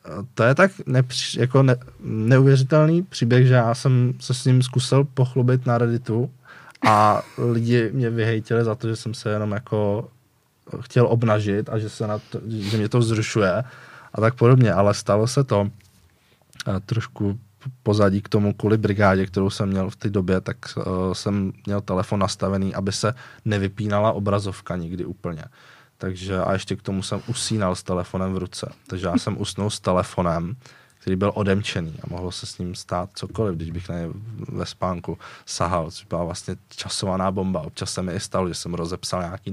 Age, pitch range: 20-39, 95-120 Hz